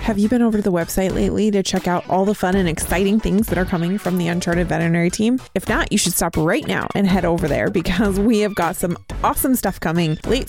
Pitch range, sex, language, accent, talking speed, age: 170-220 Hz, female, English, American, 255 wpm, 20-39